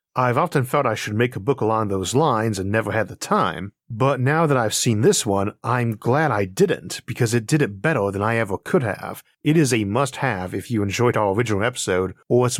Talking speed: 230 wpm